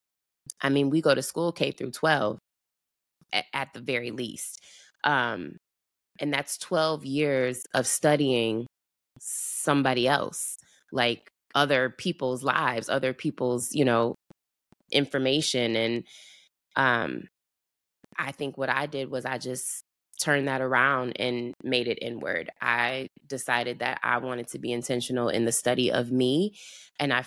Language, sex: English, female